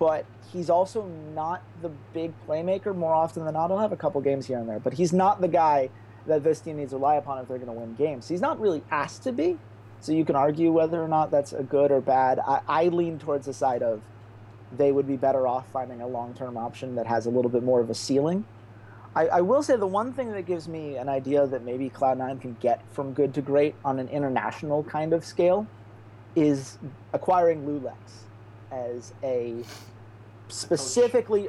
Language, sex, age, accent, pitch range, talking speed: English, male, 30-49, American, 125-165 Hz, 215 wpm